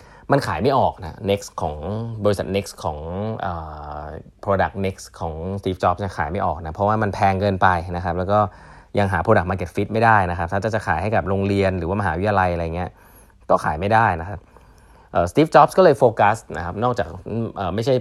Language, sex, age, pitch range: Thai, male, 20-39, 90-110 Hz